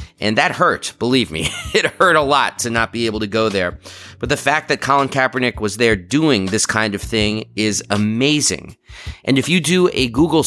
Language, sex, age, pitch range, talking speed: English, male, 30-49, 105-135 Hz, 210 wpm